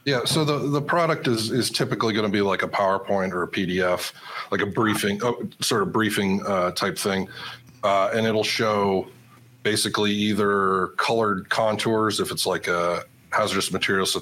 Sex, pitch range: male, 90-110 Hz